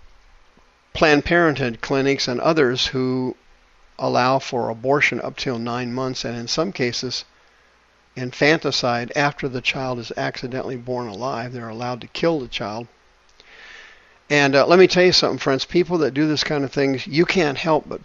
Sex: male